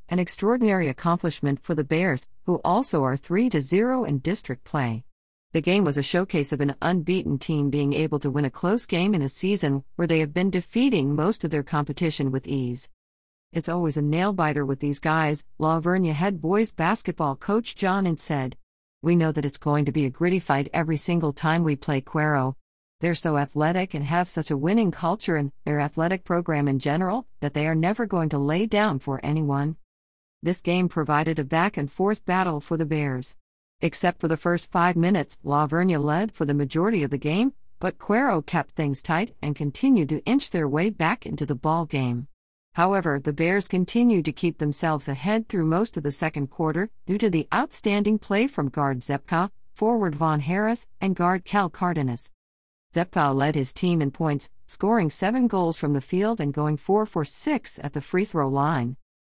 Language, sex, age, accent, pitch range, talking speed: English, female, 50-69, American, 145-185 Hz, 195 wpm